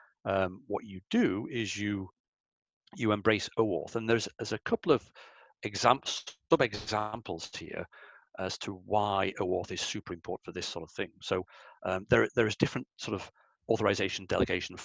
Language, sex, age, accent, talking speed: English, male, 40-59, British, 160 wpm